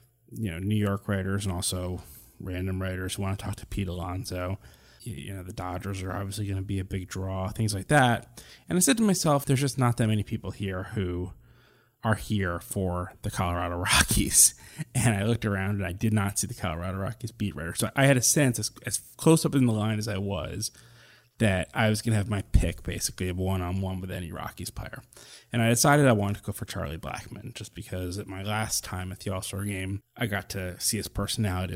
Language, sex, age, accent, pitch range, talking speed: English, male, 20-39, American, 95-115 Hz, 225 wpm